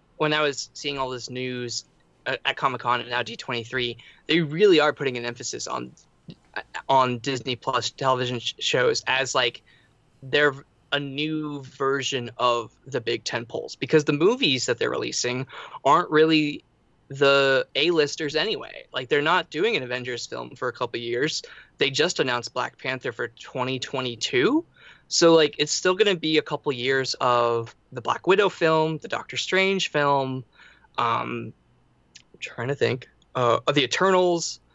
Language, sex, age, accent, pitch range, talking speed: English, male, 20-39, American, 125-155 Hz, 160 wpm